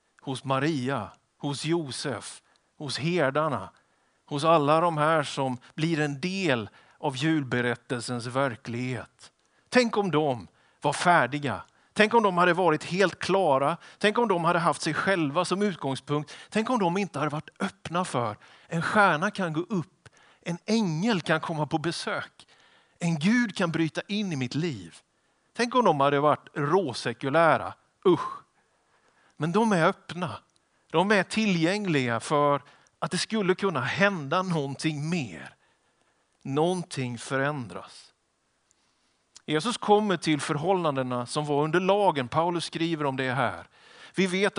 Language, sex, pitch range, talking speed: Swedish, male, 140-180 Hz, 140 wpm